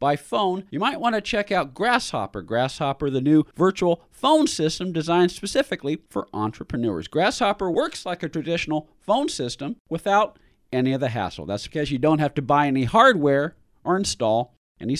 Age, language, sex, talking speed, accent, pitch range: 40-59, English, male, 170 wpm, American, 130-180 Hz